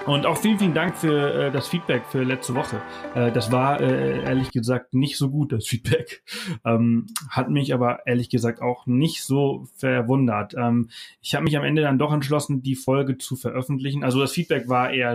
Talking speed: 200 wpm